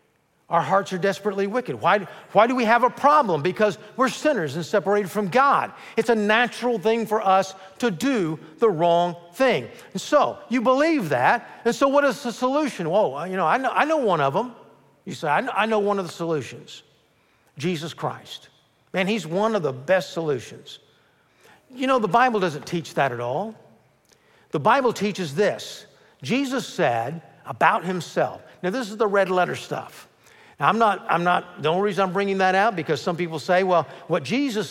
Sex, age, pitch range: male, 50-69, 160-215 Hz